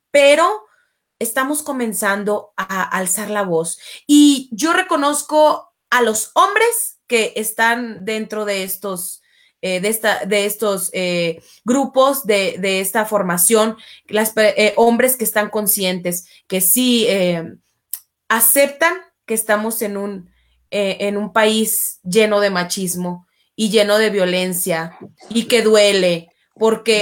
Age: 30-49